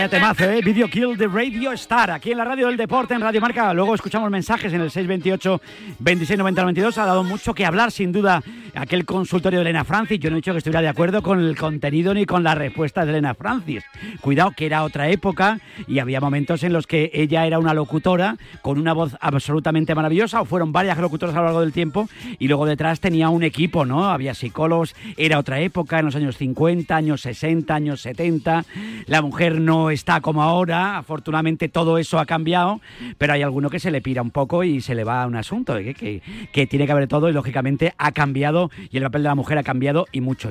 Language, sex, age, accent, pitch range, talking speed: Spanish, male, 40-59, Spanish, 140-180 Hz, 225 wpm